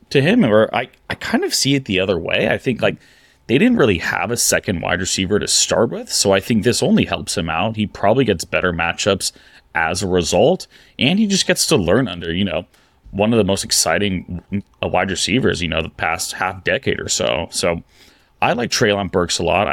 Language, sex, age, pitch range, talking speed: English, male, 30-49, 85-110 Hz, 225 wpm